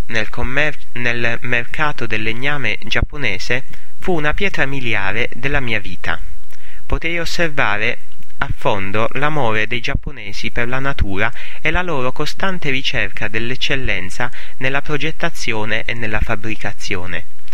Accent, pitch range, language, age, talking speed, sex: Italian, 105-140 Hz, English, 30-49, 120 wpm, male